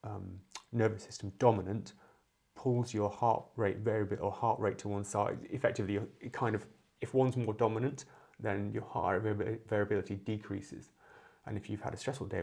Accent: British